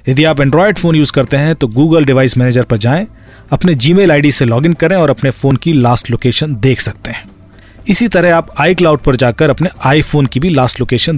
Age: 40-59